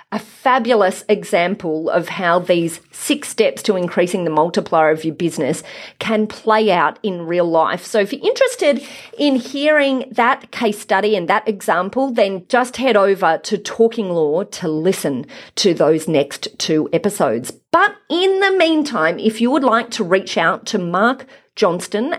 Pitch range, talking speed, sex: 185-270 Hz, 165 wpm, female